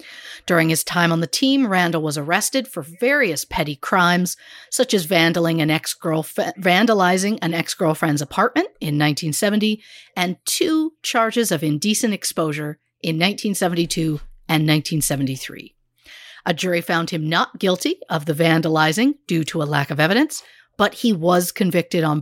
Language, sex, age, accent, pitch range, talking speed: English, female, 50-69, American, 165-220 Hz, 140 wpm